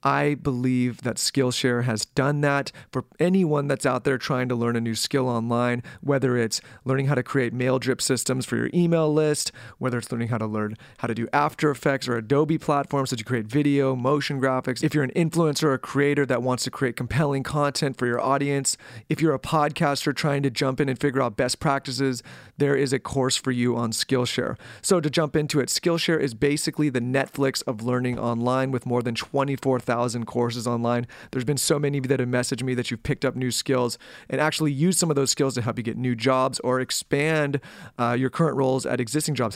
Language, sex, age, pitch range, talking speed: English, male, 30-49, 120-140 Hz, 220 wpm